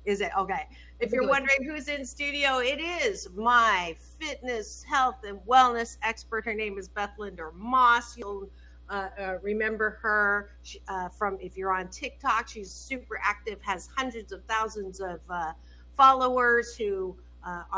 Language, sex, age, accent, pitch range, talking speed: English, female, 50-69, American, 195-255 Hz, 160 wpm